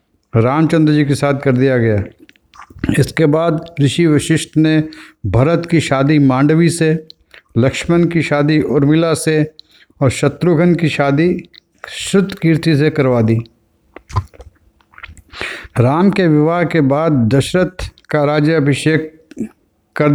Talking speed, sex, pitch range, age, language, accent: 120 wpm, male, 135-160 Hz, 50-69, Hindi, native